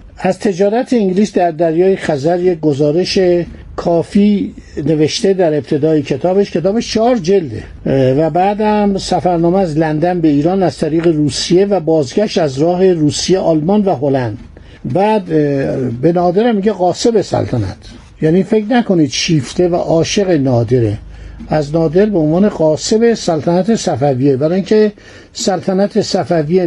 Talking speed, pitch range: 130 wpm, 150-205 Hz